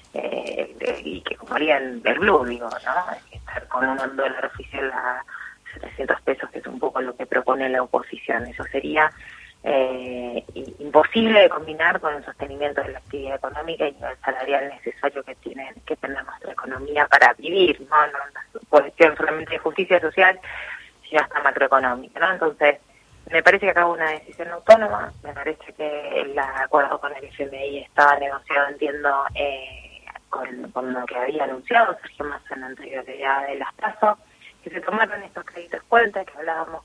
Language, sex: Spanish, female